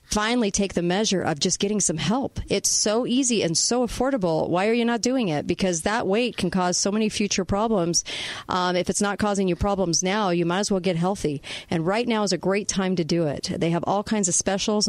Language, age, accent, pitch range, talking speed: English, 40-59, American, 170-215 Hz, 240 wpm